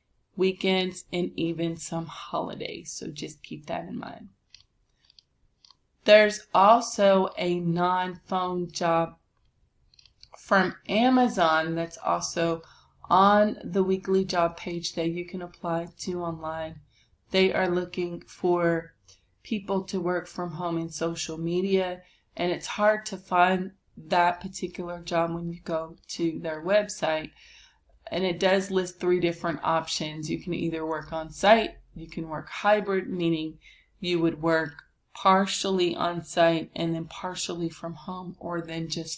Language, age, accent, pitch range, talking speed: English, 20-39, American, 165-190 Hz, 135 wpm